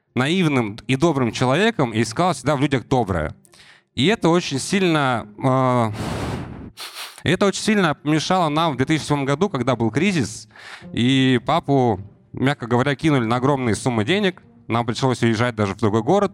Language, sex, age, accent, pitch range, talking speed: Russian, male, 20-39, native, 115-170 Hz, 145 wpm